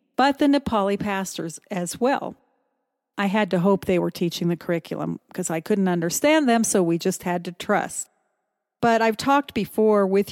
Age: 50-69